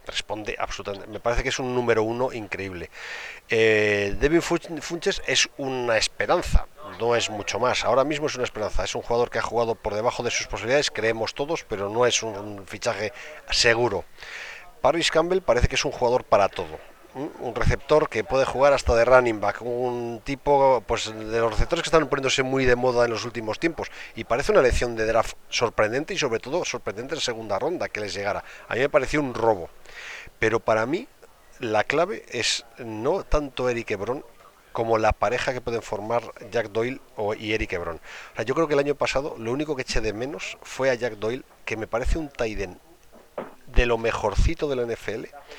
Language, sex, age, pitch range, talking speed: Spanish, male, 40-59, 110-140 Hz, 200 wpm